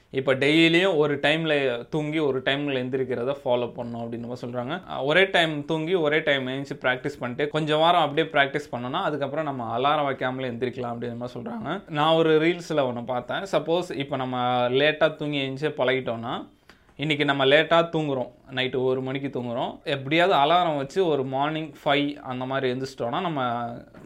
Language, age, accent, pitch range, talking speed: Tamil, 20-39, native, 125-155 Hz, 155 wpm